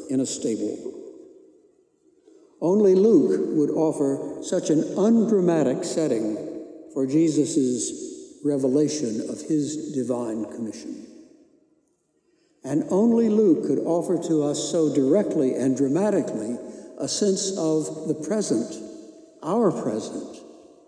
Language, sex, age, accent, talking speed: English, male, 60-79, American, 105 wpm